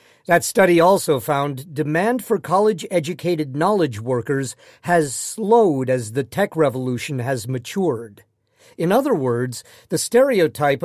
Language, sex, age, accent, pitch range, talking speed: English, male, 50-69, American, 135-190 Hz, 120 wpm